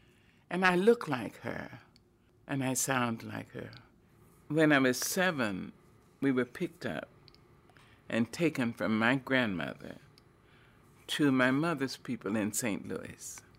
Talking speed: 135 wpm